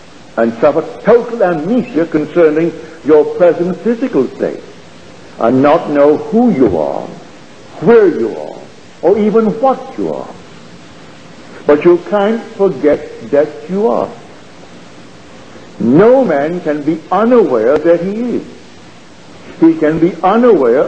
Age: 60-79